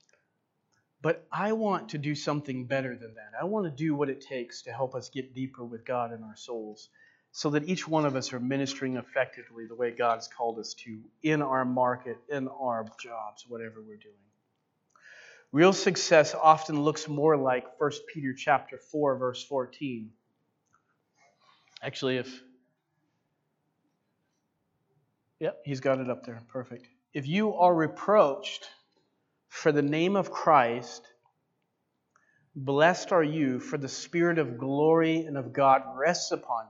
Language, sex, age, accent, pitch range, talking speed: English, male, 40-59, American, 125-155 Hz, 150 wpm